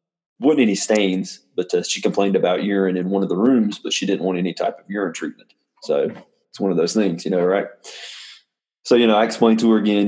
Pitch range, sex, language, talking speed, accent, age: 95-115 Hz, male, English, 240 wpm, American, 20-39